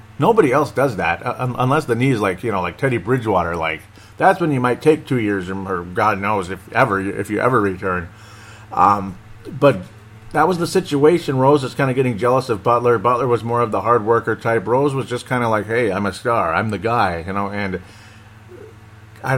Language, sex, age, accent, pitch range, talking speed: English, male, 40-59, American, 105-125 Hz, 215 wpm